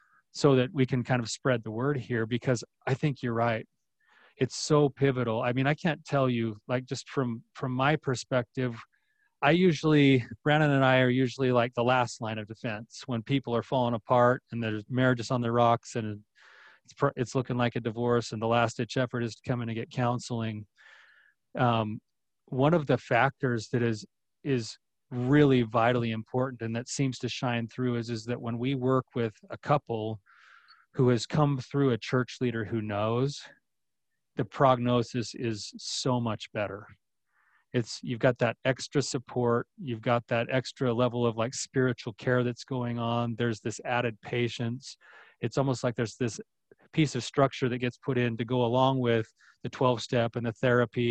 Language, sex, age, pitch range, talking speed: English, male, 30-49, 115-130 Hz, 195 wpm